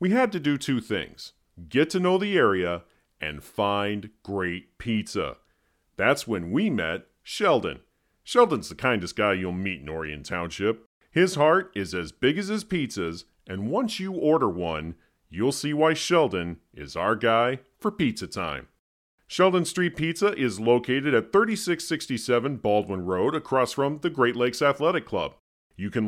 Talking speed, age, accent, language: 160 wpm, 40-59, American, English